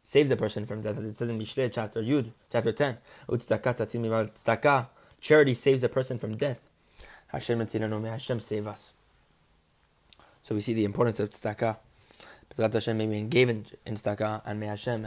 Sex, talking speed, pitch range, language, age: male, 145 wpm, 110-145 Hz, English, 20-39